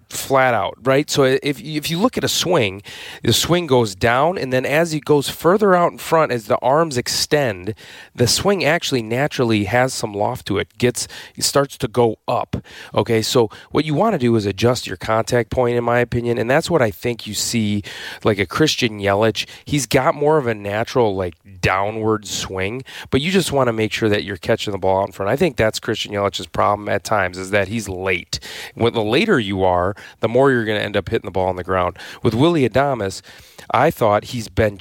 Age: 30-49